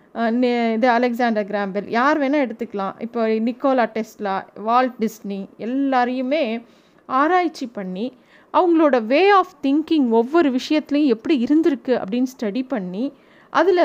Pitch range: 230-315 Hz